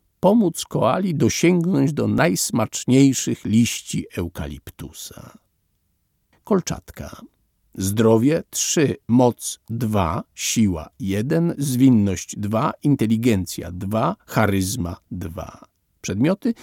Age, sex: 50-69, male